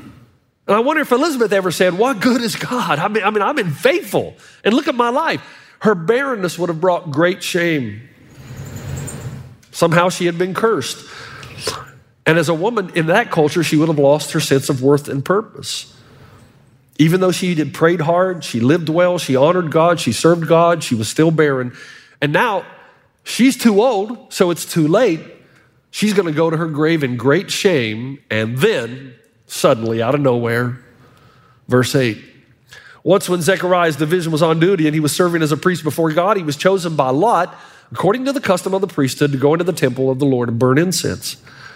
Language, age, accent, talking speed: English, 40-59, American, 195 wpm